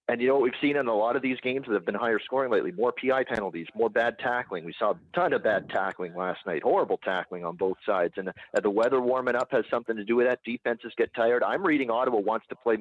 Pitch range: 105-130 Hz